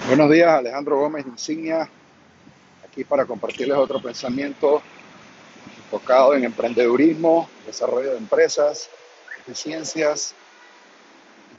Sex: male